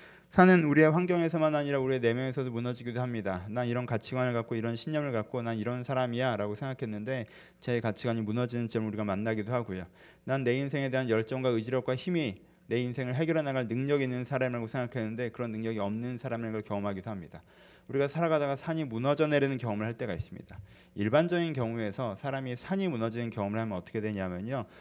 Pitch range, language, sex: 115-150 Hz, Korean, male